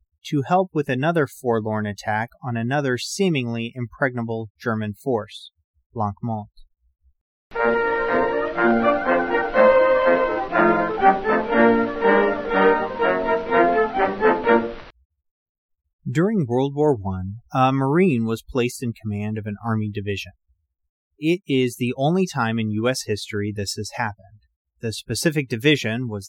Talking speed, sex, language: 95 wpm, male, English